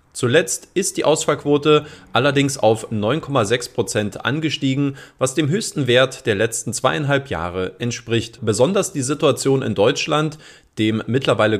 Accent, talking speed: German, 125 wpm